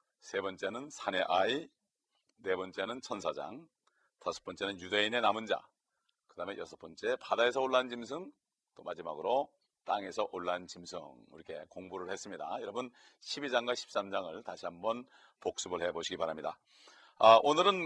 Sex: male